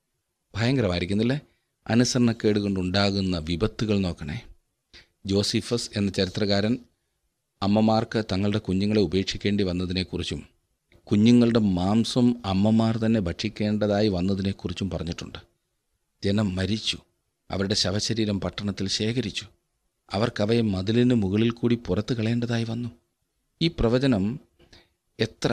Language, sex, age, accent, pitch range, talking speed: Malayalam, male, 40-59, native, 95-120 Hz, 85 wpm